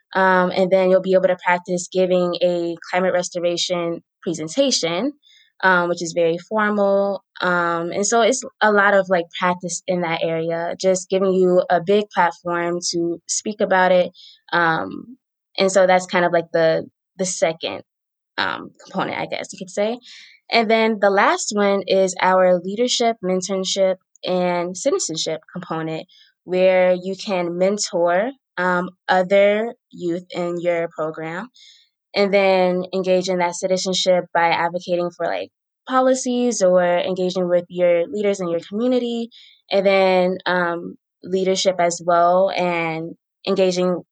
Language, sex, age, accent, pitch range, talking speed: English, female, 20-39, American, 175-200 Hz, 145 wpm